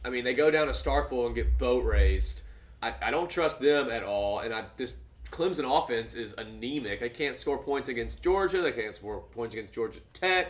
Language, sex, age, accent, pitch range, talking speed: English, male, 30-49, American, 115-145 Hz, 215 wpm